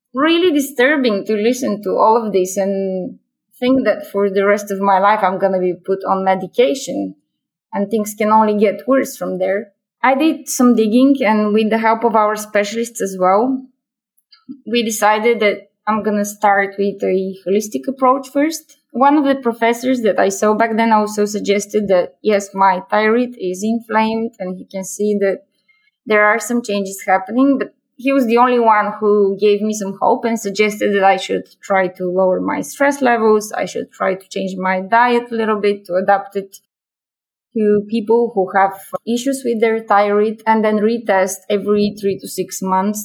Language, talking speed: English, 190 wpm